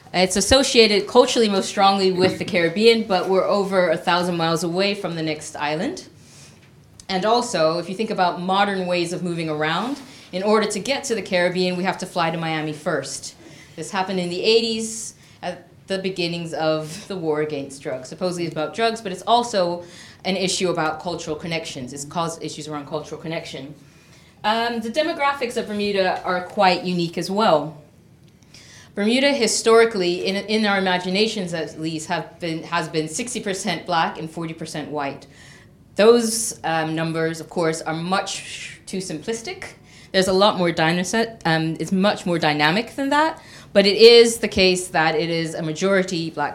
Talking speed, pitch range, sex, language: 175 wpm, 160-200 Hz, female, English